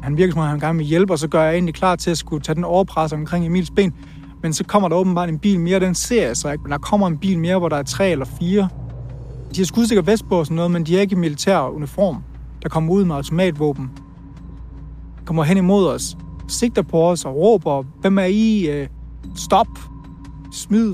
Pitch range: 145-185 Hz